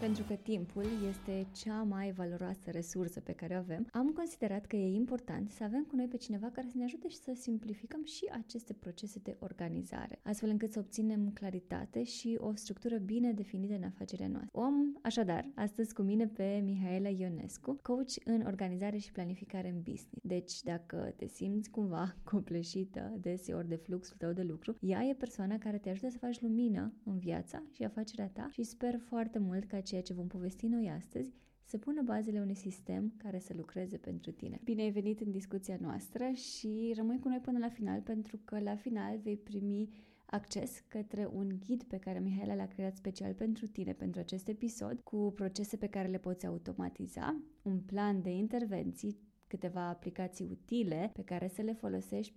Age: 20-39